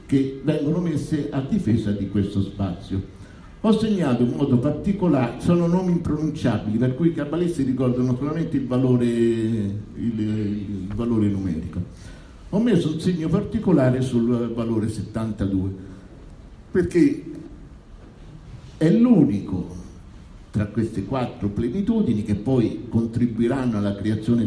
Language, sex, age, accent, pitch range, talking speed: Italian, male, 60-79, native, 100-130 Hz, 120 wpm